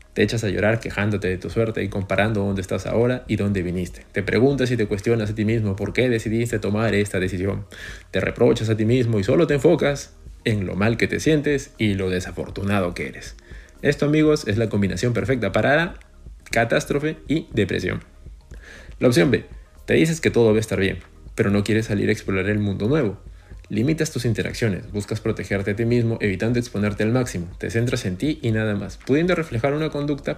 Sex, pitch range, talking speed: male, 95-125 Hz, 205 wpm